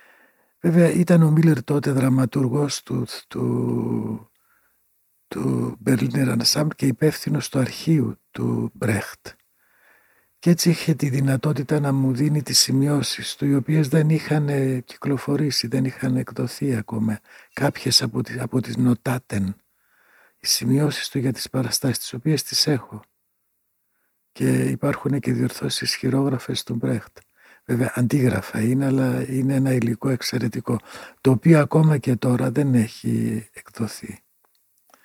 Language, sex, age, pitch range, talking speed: Greek, male, 60-79, 115-145 Hz, 125 wpm